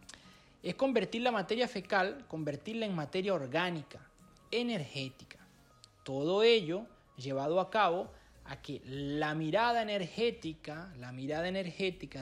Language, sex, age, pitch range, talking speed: Spanish, male, 30-49, 145-195 Hz, 115 wpm